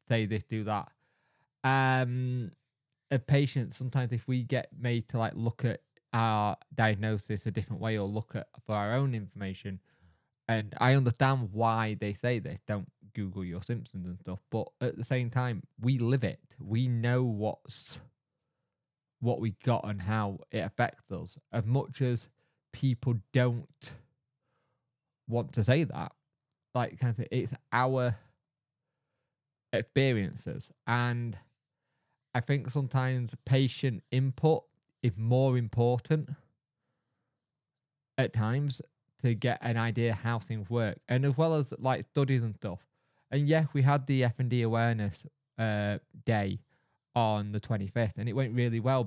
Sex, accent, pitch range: male, British, 115-135 Hz